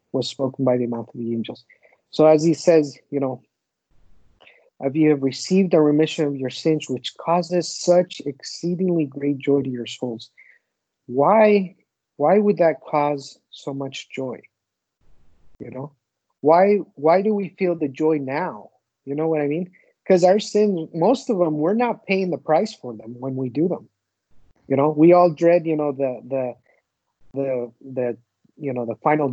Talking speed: 180 wpm